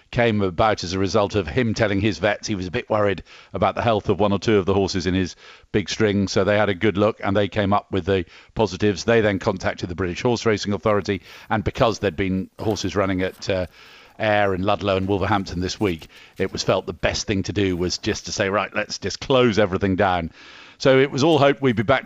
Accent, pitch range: British, 95-110 Hz